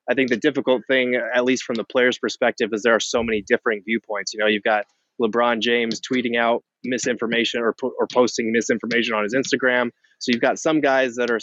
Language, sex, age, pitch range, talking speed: English, male, 20-39, 115-135 Hz, 215 wpm